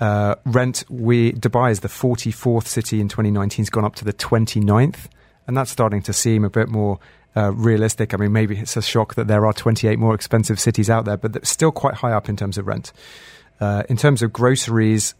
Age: 30-49